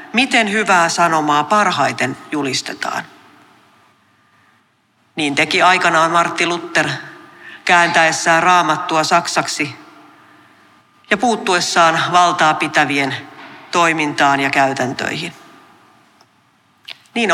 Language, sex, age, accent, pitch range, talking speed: Finnish, female, 40-59, native, 145-185 Hz, 70 wpm